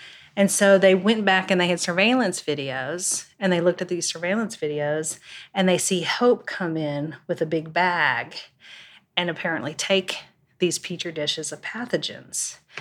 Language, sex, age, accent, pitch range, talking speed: English, female, 30-49, American, 165-195 Hz, 165 wpm